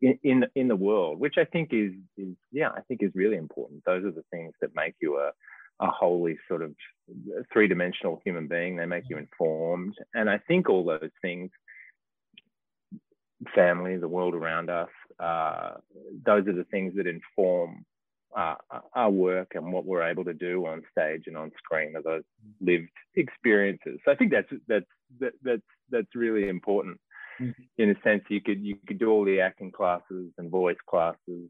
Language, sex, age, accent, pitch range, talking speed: English, male, 30-49, Australian, 85-110 Hz, 185 wpm